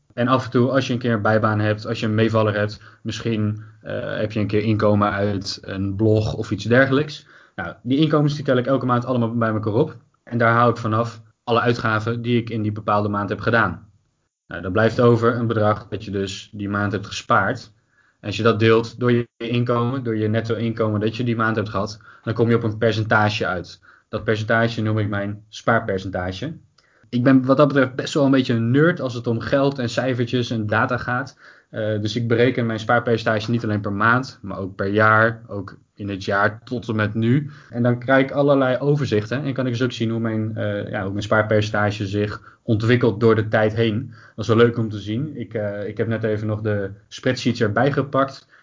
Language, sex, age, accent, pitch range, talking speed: Dutch, male, 20-39, Dutch, 110-130 Hz, 220 wpm